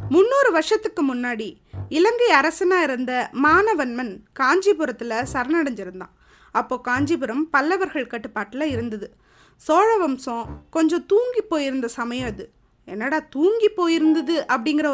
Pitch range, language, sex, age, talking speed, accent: 235-335 Hz, Tamil, female, 20-39, 100 wpm, native